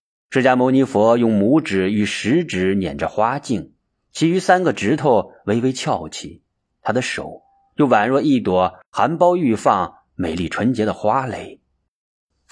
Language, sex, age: Chinese, male, 30-49